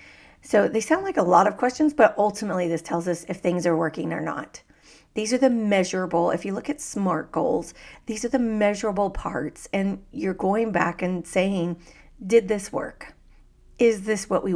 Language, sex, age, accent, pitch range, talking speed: English, female, 40-59, American, 175-225 Hz, 195 wpm